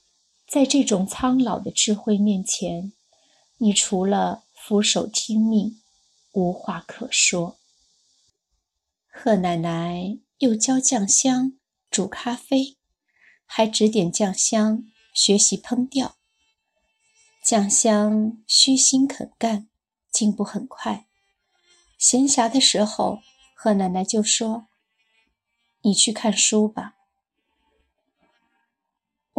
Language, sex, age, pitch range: Chinese, female, 30-49, 195-260 Hz